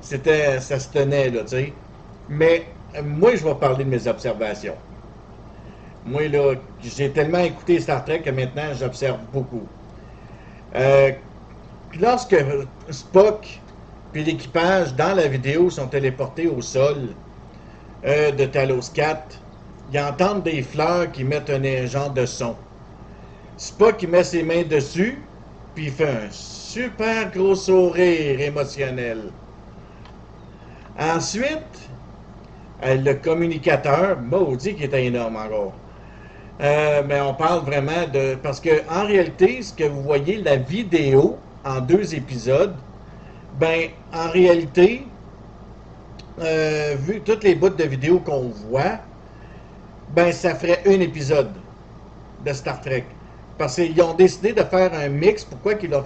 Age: 50-69